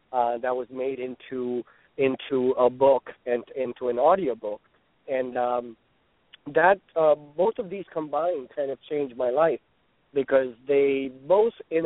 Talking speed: 150 wpm